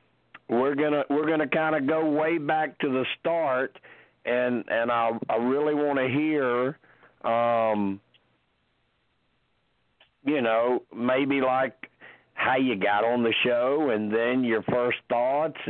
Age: 50-69